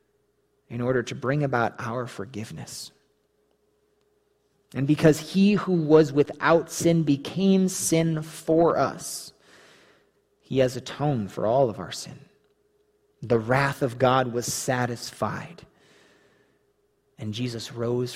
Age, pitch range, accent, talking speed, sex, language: 30-49, 120-150 Hz, American, 115 wpm, male, English